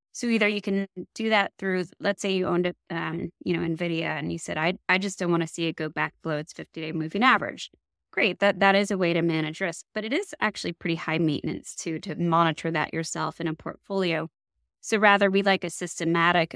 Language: English